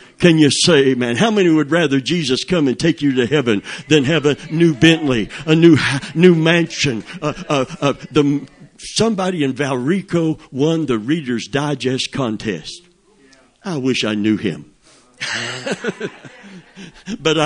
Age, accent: 60-79, American